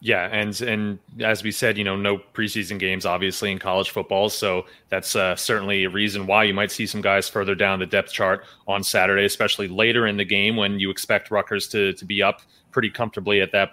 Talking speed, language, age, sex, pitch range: 225 wpm, English, 30-49, male, 105-140 Hz